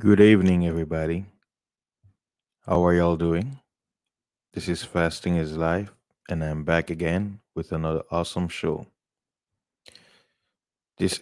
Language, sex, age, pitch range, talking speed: English, male, 20-39, 85-100 Hz, 110 wpm